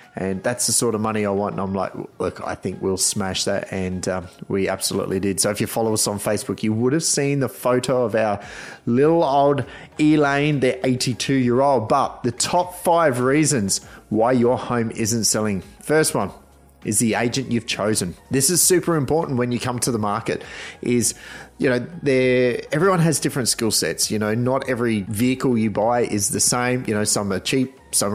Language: English